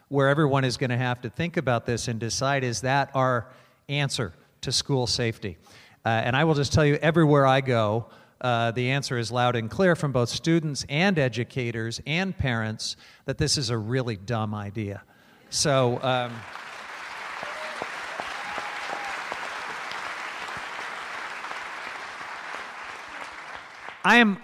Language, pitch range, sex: English, 115-140 Hz, male